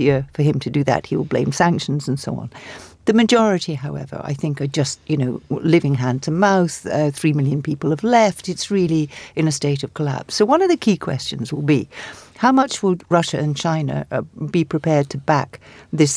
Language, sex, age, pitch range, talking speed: English, female, 60-79, 140-175 Hz, 210 wpm